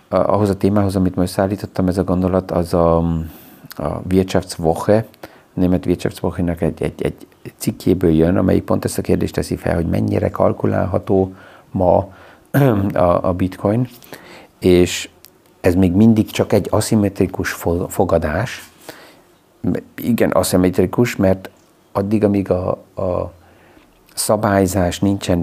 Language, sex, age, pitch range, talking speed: Hungarian, male, 50-69, 85-100 Hz, 125 wpm